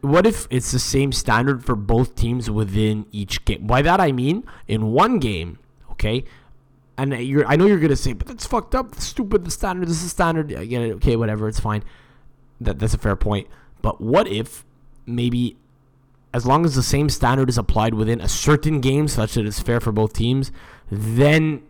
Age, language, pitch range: 20-39, English, 105-135 Hz